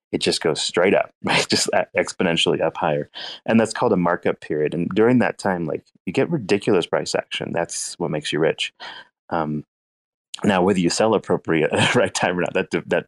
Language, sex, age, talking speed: English, male, 30-49, 195 wpm